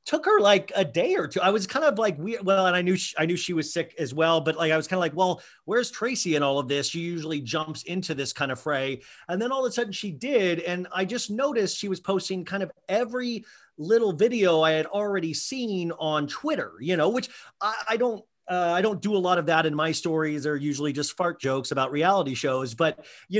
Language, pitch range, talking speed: English, 155-200 Hz, 250 wpm